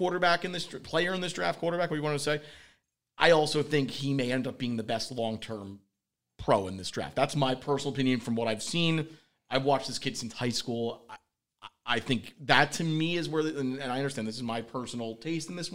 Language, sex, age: English, male, 30-49